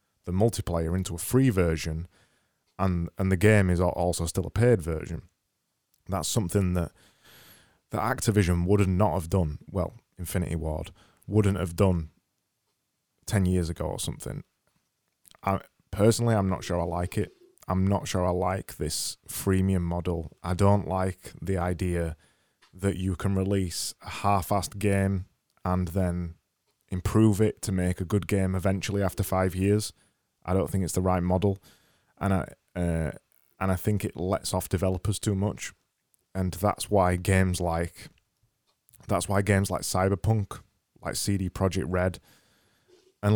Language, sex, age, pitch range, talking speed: English, male, 20-39, 90-100 Hz, 155 wpm